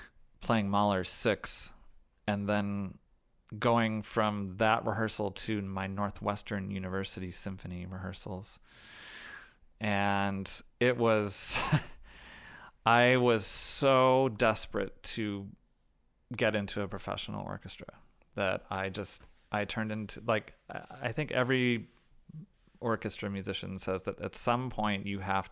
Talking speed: 110 wpm